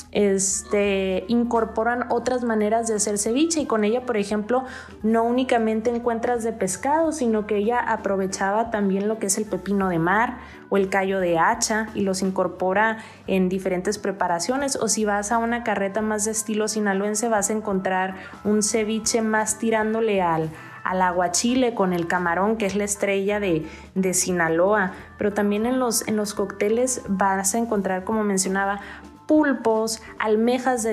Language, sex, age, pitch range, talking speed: Spanish, female, 20-39, 190-225 Hz, 160 wpm